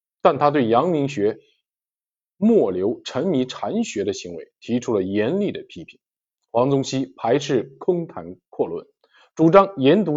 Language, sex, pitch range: Chinese, male, 130-195 Hz